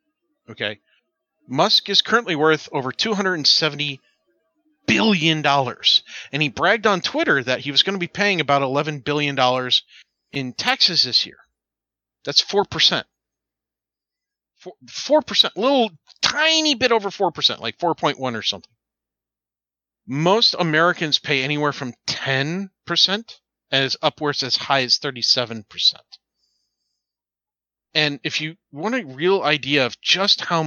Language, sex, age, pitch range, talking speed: English, male, 40-59, 135-195 Hz, 145 wpm